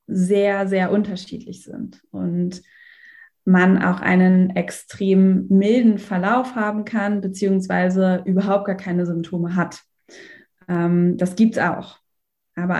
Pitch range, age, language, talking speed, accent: 180-205 Hz, 20-39, German, 115 wpm, German